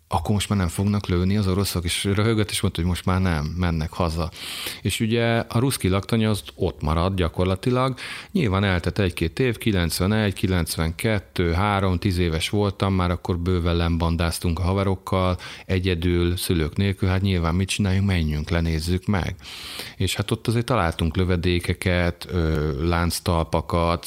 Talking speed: 145 wpm